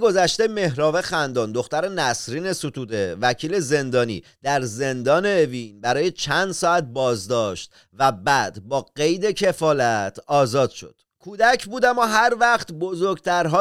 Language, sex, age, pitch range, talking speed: Persian, male, 30-49, 155-205 Hz, 125 wpm